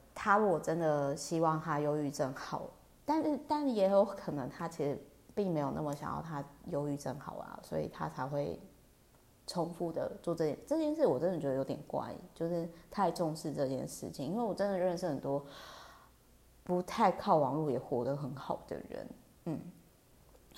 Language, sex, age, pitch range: Chinese, female, 20-39, 145-175 Hz